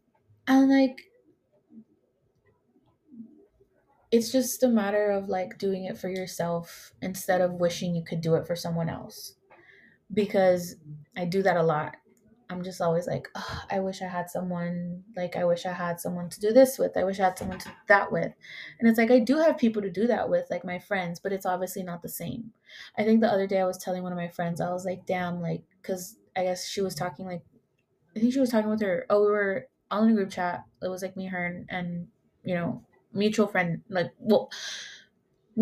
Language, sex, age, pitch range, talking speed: English, female, 20-39, 175-215 Hz, 215 wpm